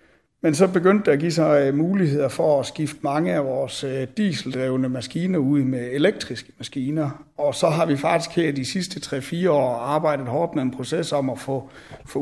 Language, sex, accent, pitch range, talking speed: Danish, male, native, 135-160 Hz, 185 wpm